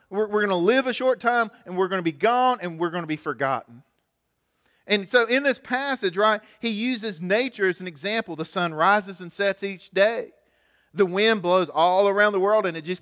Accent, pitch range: American, 180-230 Hz